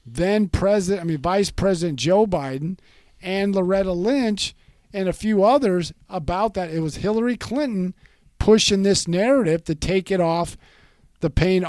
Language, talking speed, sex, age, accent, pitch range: English, 155 wpm, male, 50-69, American, 140-195 Hz